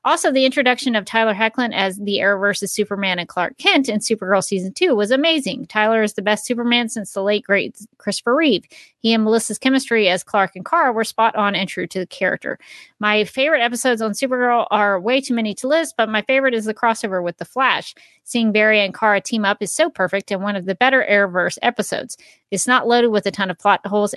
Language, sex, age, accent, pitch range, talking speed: English, female, 40-59, American, 195-245 Hz, 230 wpm